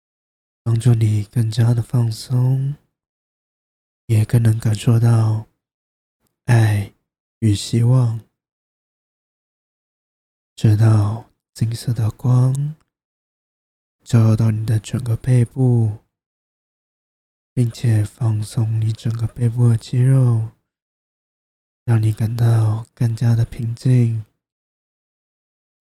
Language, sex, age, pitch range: Chinese, male, 20-39, 105-120 Hz